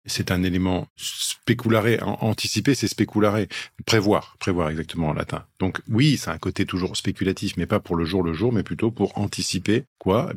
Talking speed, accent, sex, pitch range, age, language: 185 wpm, French, male, 90-110 Hz, 50-69, French